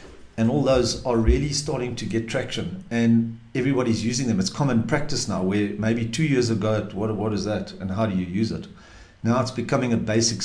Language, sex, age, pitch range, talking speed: English, male, 50-69, 110-130 Hz, 210 wpm